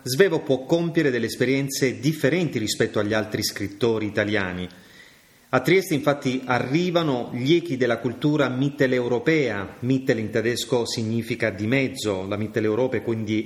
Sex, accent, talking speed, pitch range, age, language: male, native, 130 wpm, 110-145 Hz, 30-49, Italian